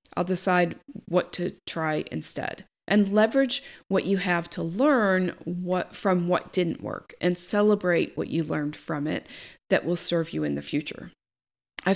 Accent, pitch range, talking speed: American, 175-220 Hz, 165 wpm